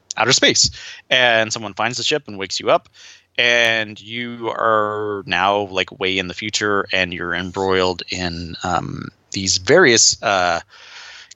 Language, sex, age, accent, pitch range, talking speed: English, male, 20-39, American, 95-120 Hz, 150 wpm